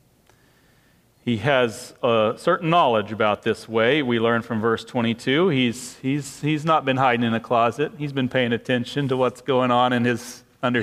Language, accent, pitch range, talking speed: English, American, 130-170 Hz, 185 wpm